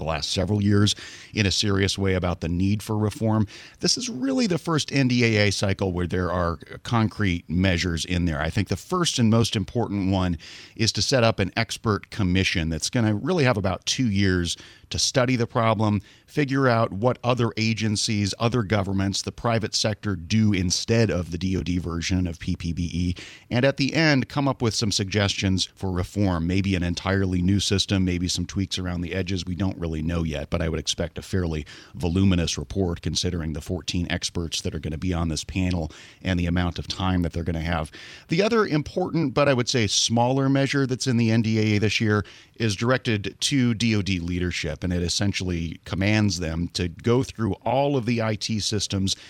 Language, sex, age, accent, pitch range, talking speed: English, male, 40-59, American, 85-110 Hz, 195 wpm